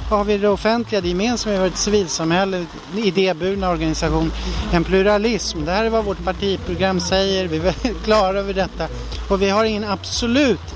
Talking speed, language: 165 wpm, Swedish